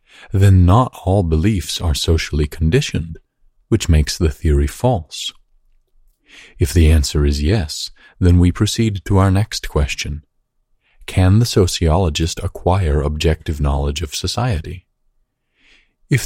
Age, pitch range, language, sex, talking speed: 40-59, 75-95 Hz, English, male, 120 wpm